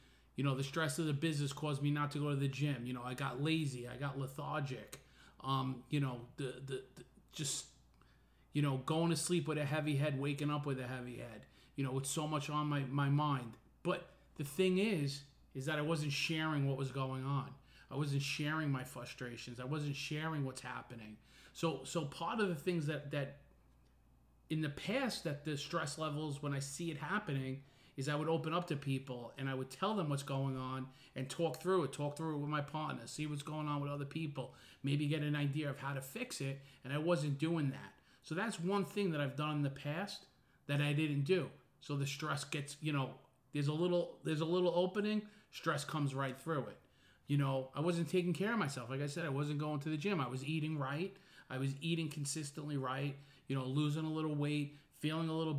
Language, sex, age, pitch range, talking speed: English, male, 30-49, 135-155 Hz, 225 wpm